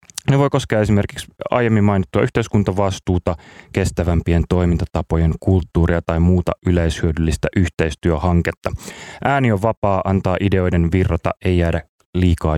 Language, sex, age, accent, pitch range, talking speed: Finnish, male, 30-49, native, 85-105 Hz, 110 wpm